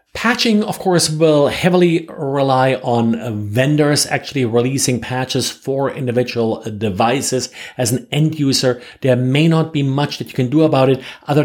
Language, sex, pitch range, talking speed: English, male, 115-145 Hz, 155 wpm